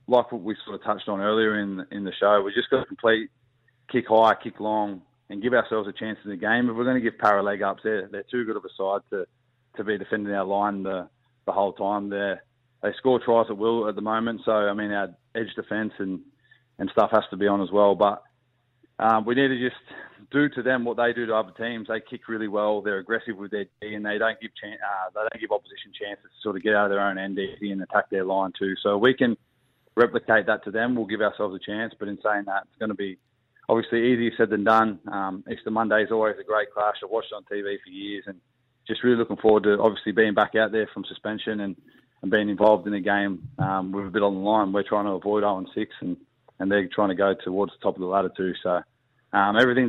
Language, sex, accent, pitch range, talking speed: English, male, Australian, 100-115 Hz, 260 wpm